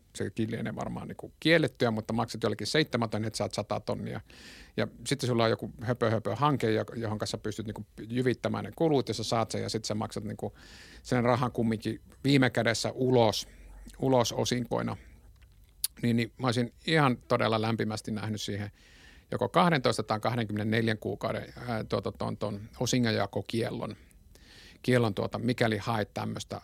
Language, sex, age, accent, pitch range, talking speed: Finnish, male, 50-69, native, 110-125 Hz, 140 wpm